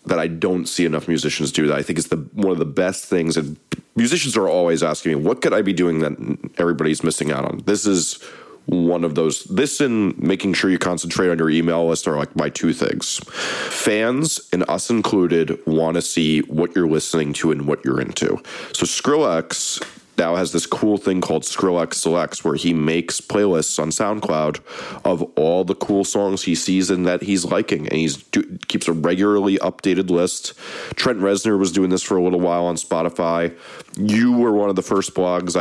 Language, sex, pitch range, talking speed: English, male, 80-95 Hz, 200 wpm